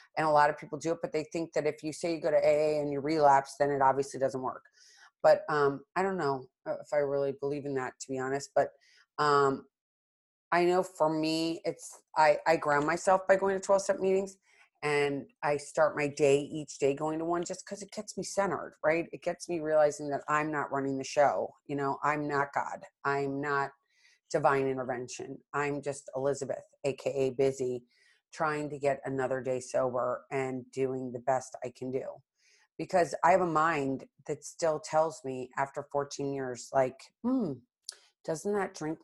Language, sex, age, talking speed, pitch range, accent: English, female, 30-49, 195 wpm, 135-165 Hz, American